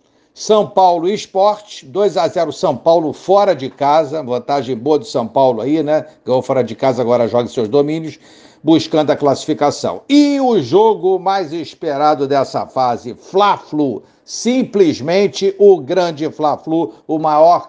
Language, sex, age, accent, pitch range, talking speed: Portuguese, male, 60-79, Brazilian, 140-180 Hz, 140 wpm